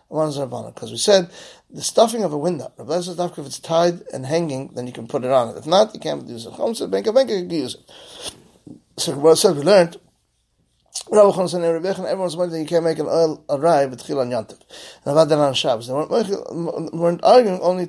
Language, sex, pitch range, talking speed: English, male, 130-185 Hz, 155 wpm